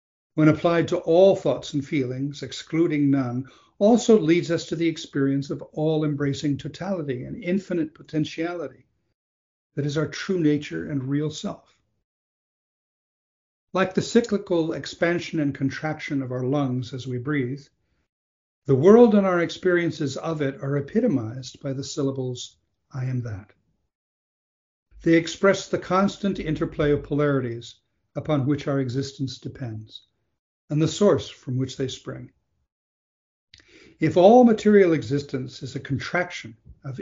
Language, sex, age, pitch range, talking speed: English, male, 60-79, 130-165 Hz, 135 wpm